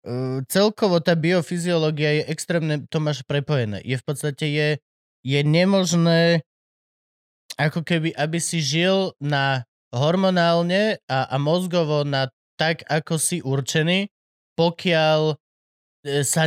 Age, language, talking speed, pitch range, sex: 20-39, Slovak, 115 wpm, 135-170 Hz, male